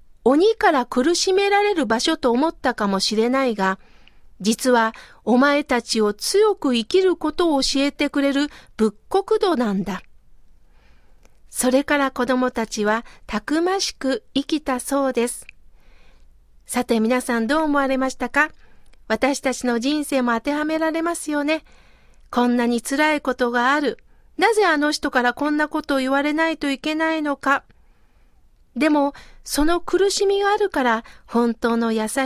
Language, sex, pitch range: Japanese, female, 240-315 Hz